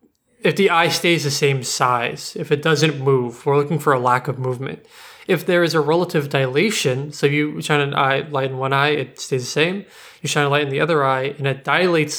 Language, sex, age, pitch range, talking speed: English, male, 20-39, 135-155 Hz, 235 wpm